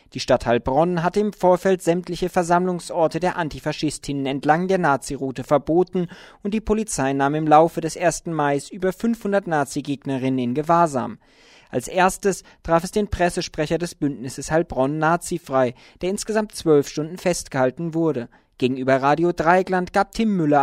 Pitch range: 135-190 Hz